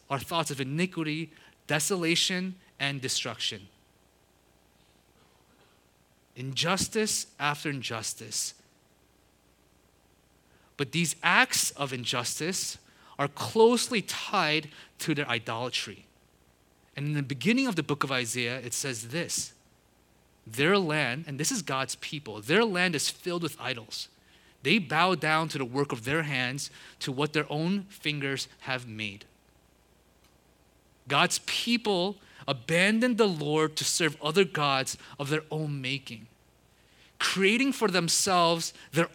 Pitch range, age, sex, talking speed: 120-185 Hz, 30-49, male, 120 wpm